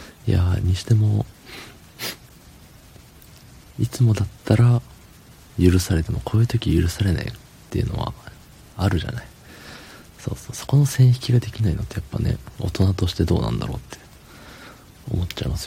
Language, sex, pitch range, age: Japanese, male, 90-115 Hz, 40-59